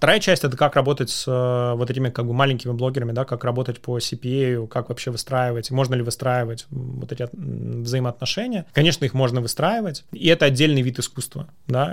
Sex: male